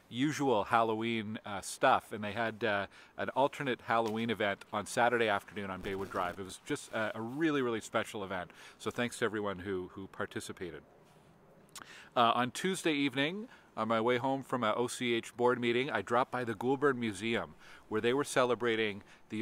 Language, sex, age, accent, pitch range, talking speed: English, male, 40-59, American, 100-125 Hz, 180 wpm